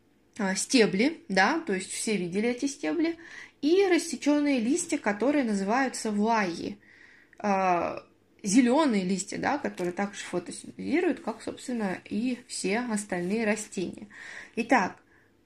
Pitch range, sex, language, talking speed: 190-265 Hz, female, Russian, 105 wpm